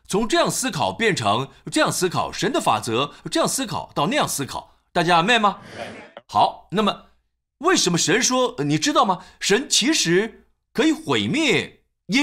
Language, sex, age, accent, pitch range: Chinese, male, 50-69, native, 180-290 Hz